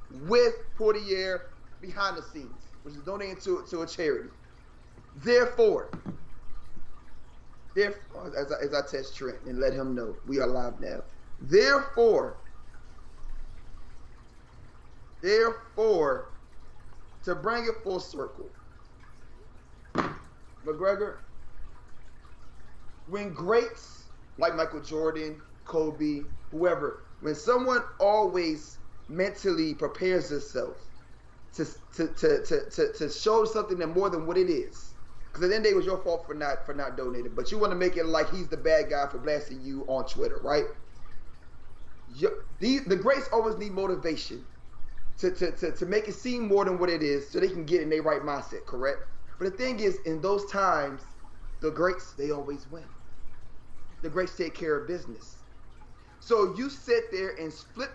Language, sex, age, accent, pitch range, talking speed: English, male, 30-49, American, 155-250 Hz, 150 wpm